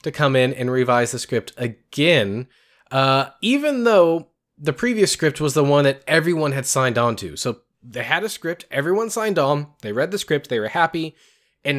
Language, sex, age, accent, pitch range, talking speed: English, male, 20-39, American, 115-145 Hz, 200 wpm